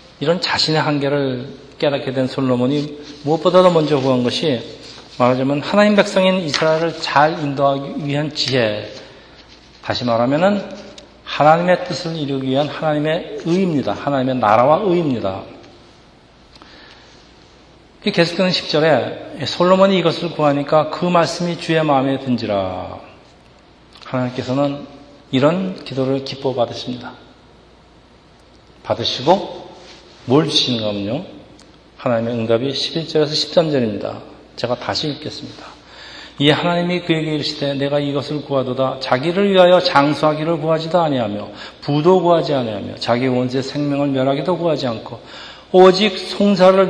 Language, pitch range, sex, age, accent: Korean, 130-170 Hz, male, 40-59, native